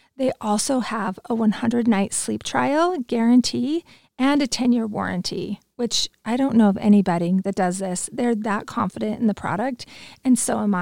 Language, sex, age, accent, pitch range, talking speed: English, female, 30-49, American, 205-250 Hz, 165 wpm